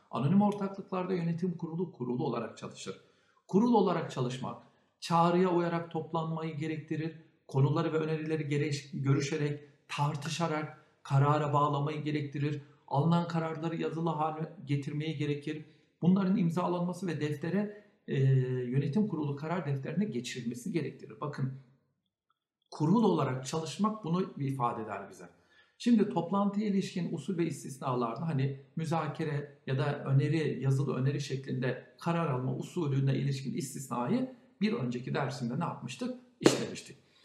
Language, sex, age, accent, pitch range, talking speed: Turkish, male, 60-79, native, 140-185 Hz, 120 wpm